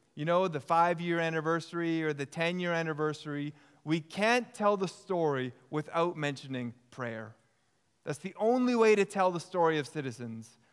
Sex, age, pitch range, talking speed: male, 20-39, 135-175 Hz, 150 wpm